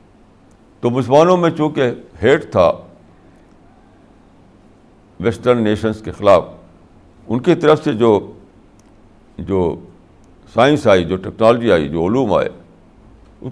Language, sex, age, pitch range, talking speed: Urdu, male, 60-79, 105-160 Hz, 110 wpm